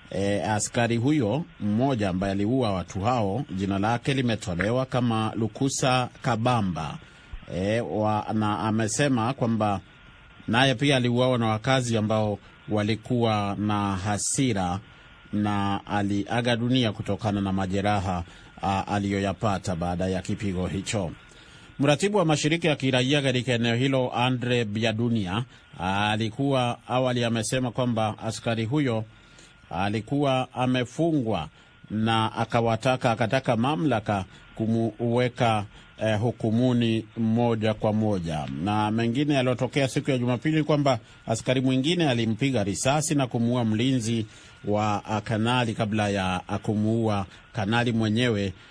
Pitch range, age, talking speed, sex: 100-125 Hz, 30-49, 110 wpm, male